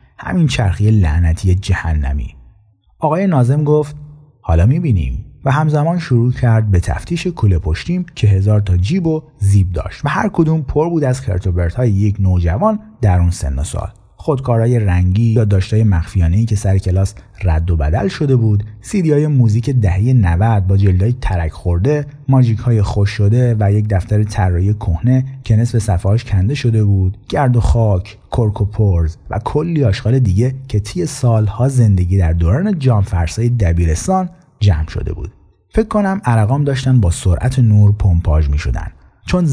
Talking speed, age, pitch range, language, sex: 160 wpm, 30-49, 95-130 Hz, Persian, male